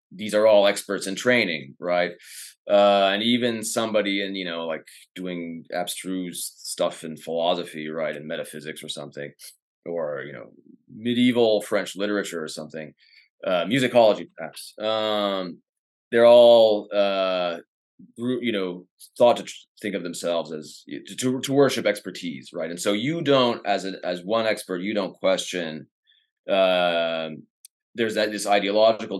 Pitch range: 85-110 Hz